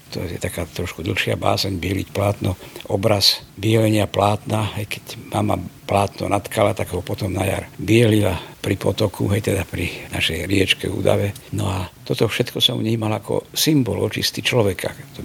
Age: 60-79